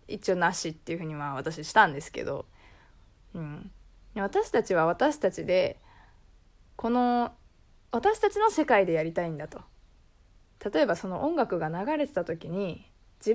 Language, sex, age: Japanese, female, 20-39